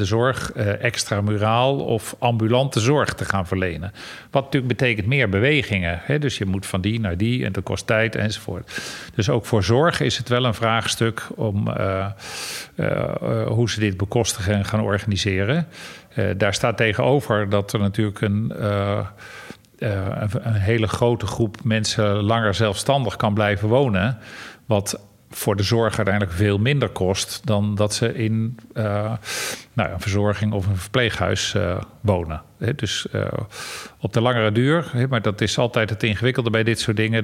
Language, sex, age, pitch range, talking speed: Dutch, male, 50-69, 100-120 Hz, 170 wpm